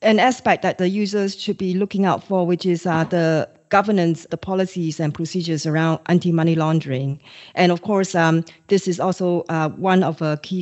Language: English